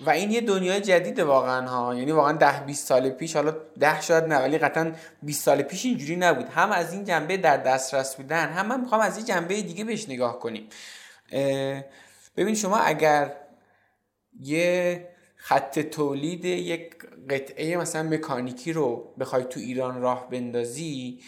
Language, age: Persian, 20-39